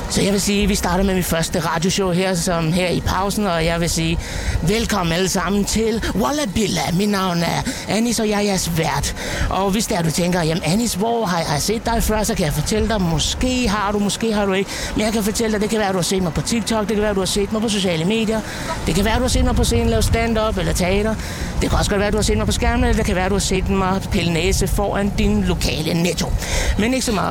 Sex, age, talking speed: male, 60-79, 290 wpm